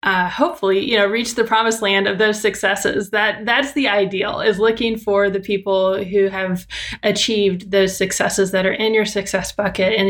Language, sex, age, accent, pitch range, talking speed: English, female, 20-39, American, 195-235 Hz, 190 wpm